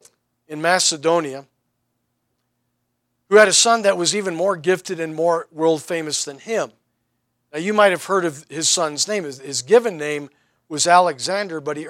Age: 50-69